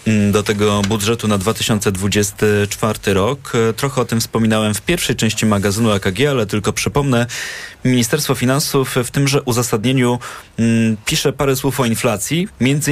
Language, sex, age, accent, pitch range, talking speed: Polish, male, 20-39, native, 105-125 Hz, 135 wpm